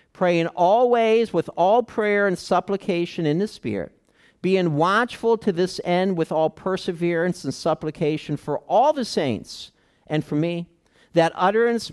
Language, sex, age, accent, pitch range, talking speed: English, male, 50-69, American, 135-175 Hz, 145 wpm